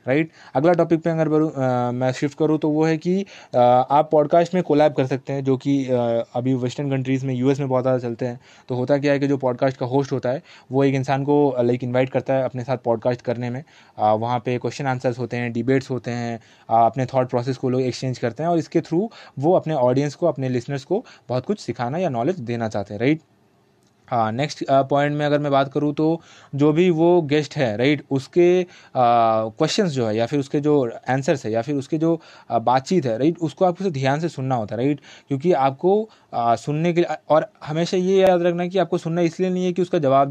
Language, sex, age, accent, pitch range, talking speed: Hindi, male, 20-39, native, 125-165 Hz, 240 wpm